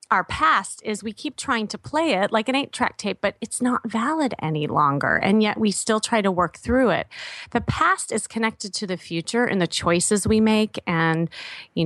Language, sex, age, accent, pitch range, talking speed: English, female, 30-49, American, 165-210 Hz, 220 wpm